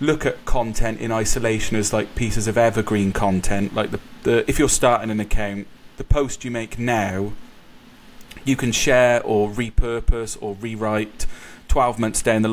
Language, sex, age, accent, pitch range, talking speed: English, male, 30-49, British, 105-115 Hz, 170 wpm